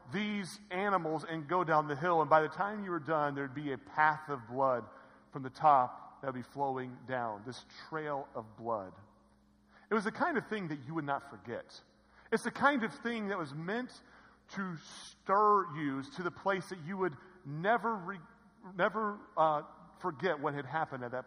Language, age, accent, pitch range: English, 40-59, American, 135-185 Hz